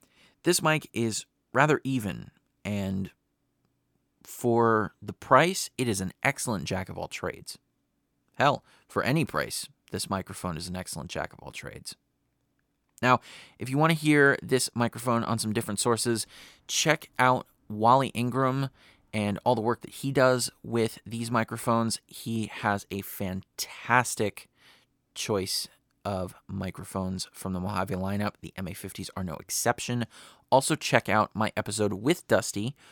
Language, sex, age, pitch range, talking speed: English, male, 30-49, 100-130 Hz, 135 wpm